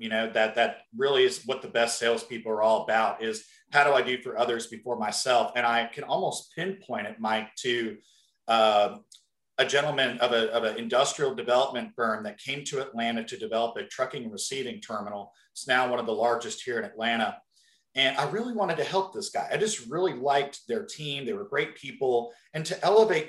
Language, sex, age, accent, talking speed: English, male, 40-59, American, 210 wpm